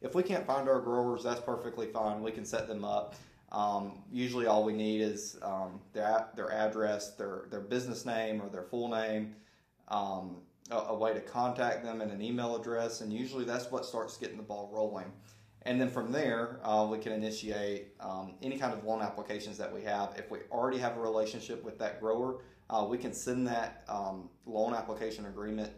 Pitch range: 105-120 Hz